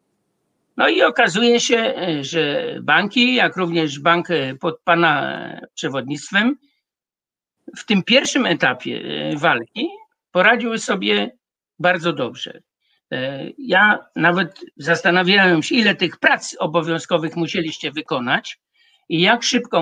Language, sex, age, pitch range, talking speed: Polish, male, 50-69, 170-210 Hz, 105 wpm